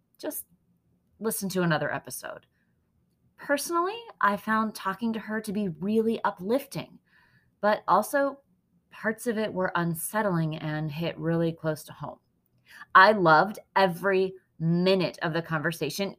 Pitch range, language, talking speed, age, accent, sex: 170-235 Hz, English, 130 wpm, 30-49, American, female